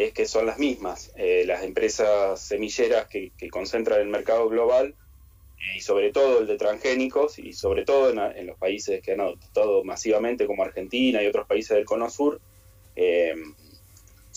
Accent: Argentinian